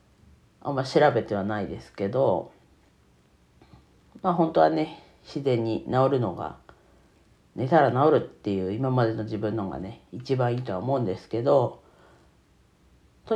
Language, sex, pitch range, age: Japanese, female, 110-160 Hz, 40-59